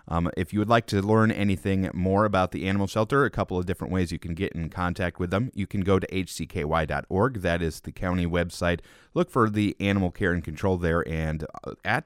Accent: American